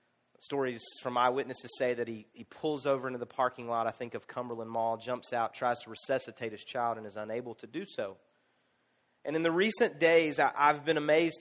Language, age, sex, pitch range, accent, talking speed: English, 30-49, male, 130-180 Hz, American, 205 wpm